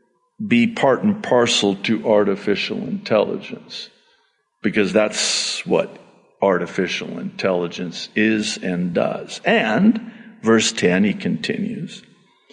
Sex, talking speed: male, 95 wpm